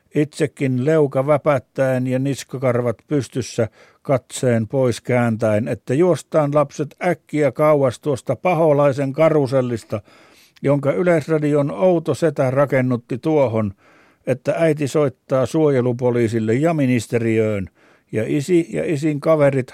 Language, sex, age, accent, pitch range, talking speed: Finnish, male, 60-79, native, 120-155 Hz, 105 wpm